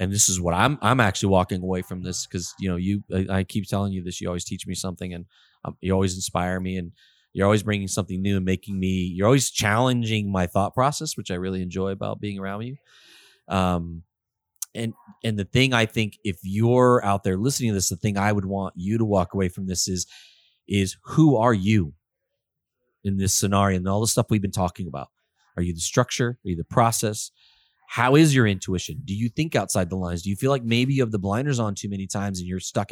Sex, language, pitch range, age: male, English, 95-130 Hz, 30-49